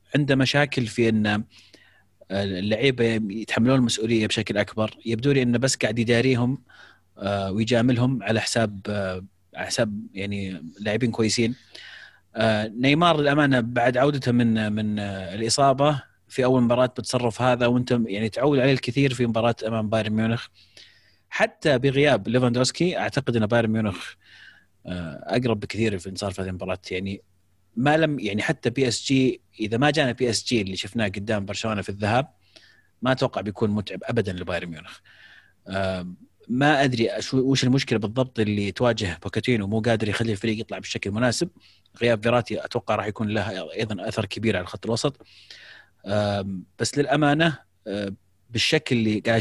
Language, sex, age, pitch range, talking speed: Arabic, male, 30-49, 105-125 Hz, 140 wpm